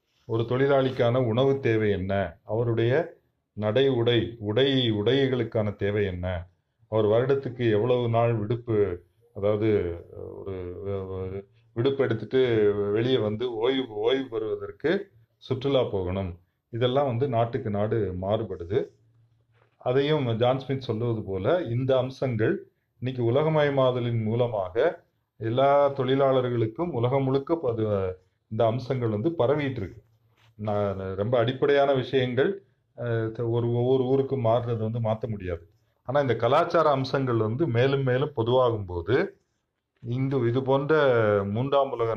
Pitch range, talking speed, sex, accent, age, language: 110-135 Hz, 100 wpm, male, native, 30-49, Tamil